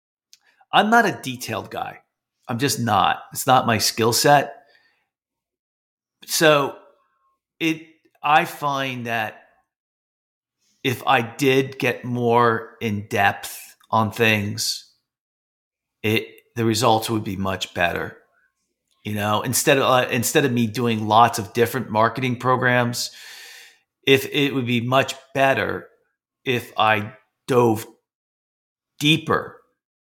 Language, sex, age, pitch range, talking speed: English, male, 40-59, 105-125 Hz, 115 wpm